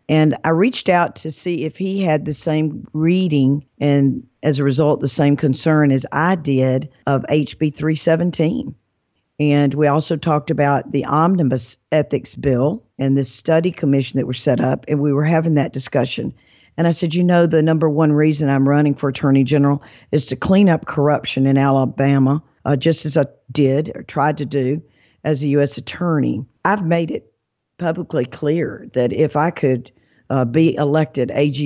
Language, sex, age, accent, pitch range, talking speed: English, female, 50-69, American, 135-160 Hz, 180 wpm